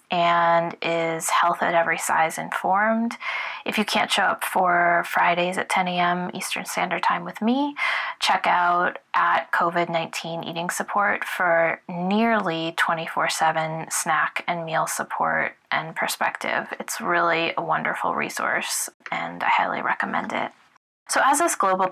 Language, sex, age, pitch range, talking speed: English, female, 20-39, 170-205 Hz, 145 wpm